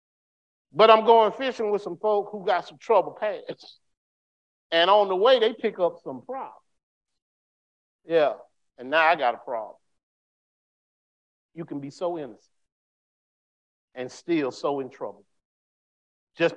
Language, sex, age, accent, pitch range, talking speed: English, male, 50-69, American, 115-160 Hz, 140 wpm